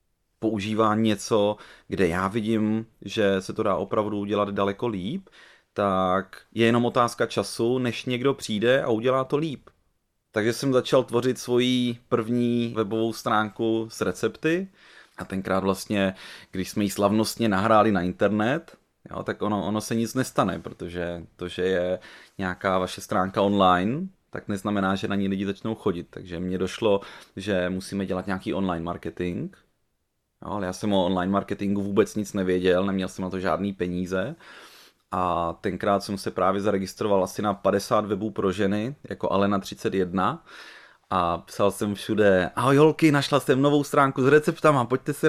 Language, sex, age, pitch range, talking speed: Czech, male, 30-49, 95-125 Hz, 160 wpm